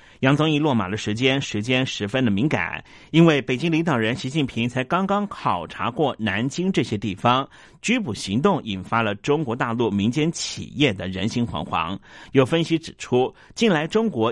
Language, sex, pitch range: Chinese, male, 110-165 Hz